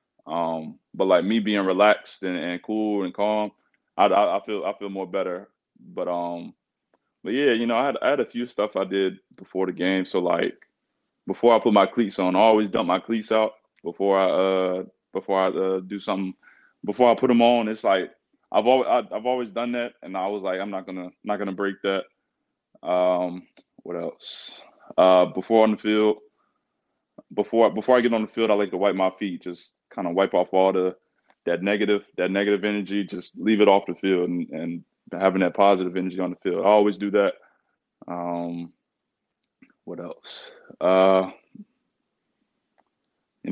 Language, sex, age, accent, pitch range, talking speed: English, male, 20-39, American, 95-105 Hz, 195 wpm